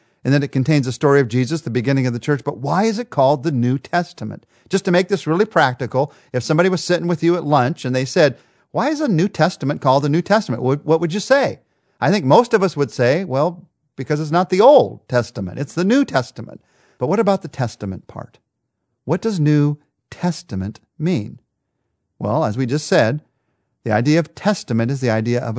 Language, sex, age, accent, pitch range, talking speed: English, male, 50-69, American, 115-150 Hz, 220 wpm